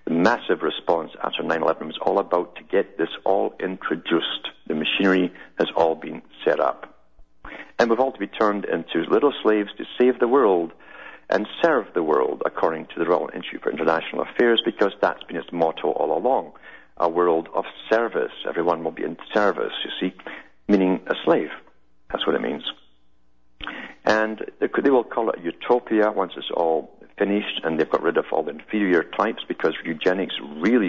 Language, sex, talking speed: English, male, 175 wpm